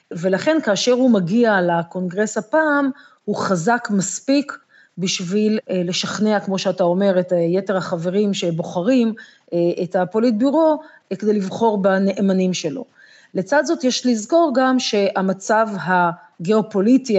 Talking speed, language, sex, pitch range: 110 wpm, Hebrew, female, 180-220 Hz